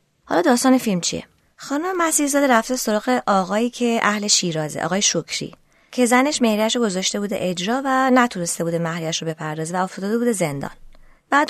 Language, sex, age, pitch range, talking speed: Persian, female, 20-39, 180-245 Hz, 155 wpm